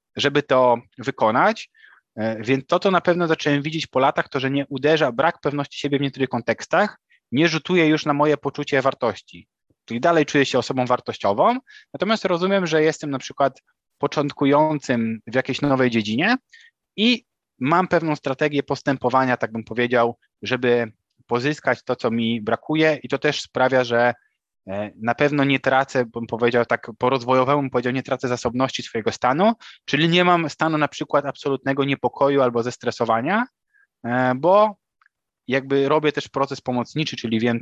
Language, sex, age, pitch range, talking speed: Polish, male, 20-39, 115-145 Hz, 155 wpm